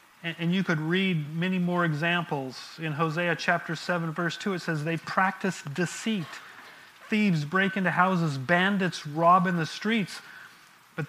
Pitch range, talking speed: 145-175 Hz, 150 wpm